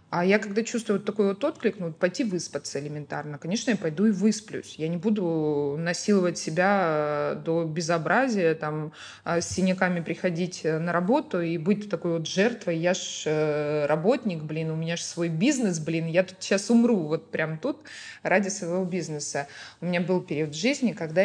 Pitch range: 165-210 Hz